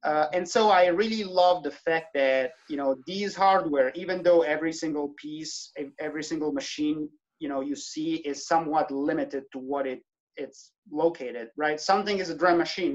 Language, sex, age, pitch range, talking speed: English, male, 30-49, 140-185 Hz, 175 wpm